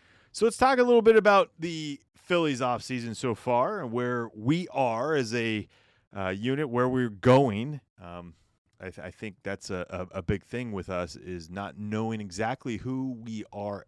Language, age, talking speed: English, 30-49, 180 wpm